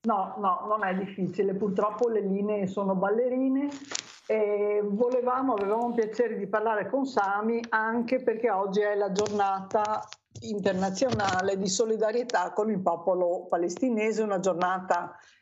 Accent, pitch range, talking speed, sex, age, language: native, 170-215 Hz, 130 wpm, female, 50-69, Italian